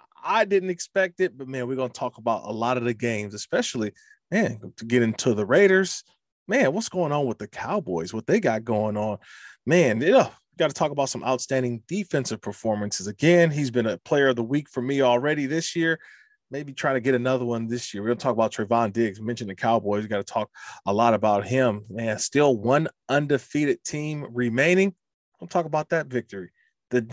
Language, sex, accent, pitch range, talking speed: English, male, American, 115-145 Hz, 215 wpm